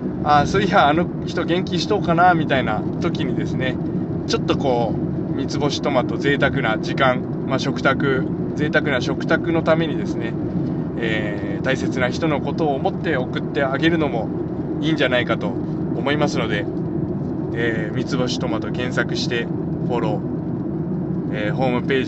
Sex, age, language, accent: male, 20-39, Japanese, native